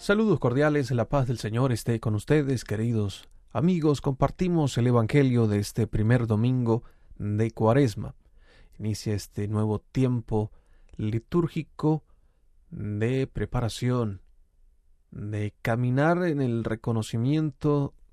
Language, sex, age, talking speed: Spanish, male, 30-49, 105 wpm